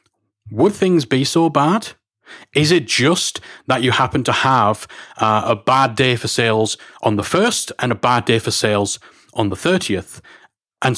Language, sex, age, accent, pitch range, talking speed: English, male, 40-59, British, 110-135 Hz, 175 wpm